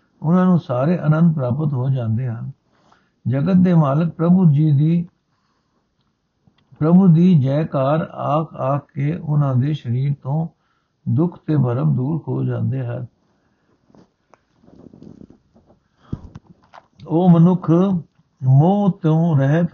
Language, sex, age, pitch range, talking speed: Punjabi, male, 60-79, 135-170 Hz, 110 wpm